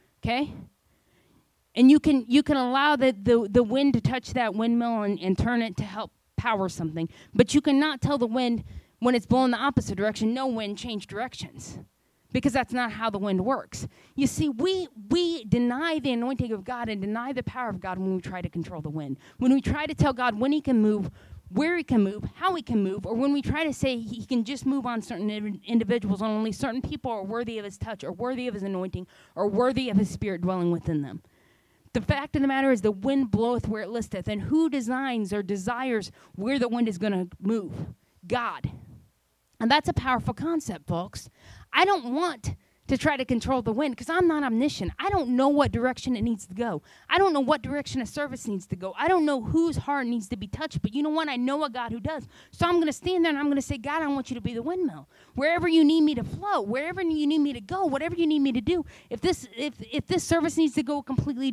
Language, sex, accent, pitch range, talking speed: English, female, American, 210-285 Hz, 245 wpm